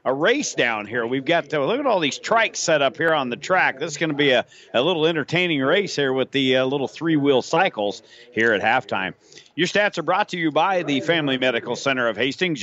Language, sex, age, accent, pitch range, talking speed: English, male, 40-59, American, 125-170 Hz, 240 wpm